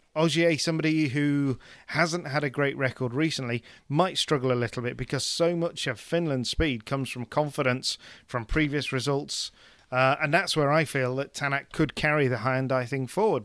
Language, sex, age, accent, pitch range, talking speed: English, male, 40-59, British, 125-160 Hz, 180 wpm